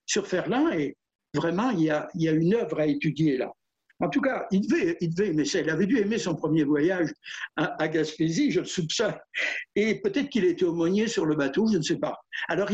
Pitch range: 175-275 Hz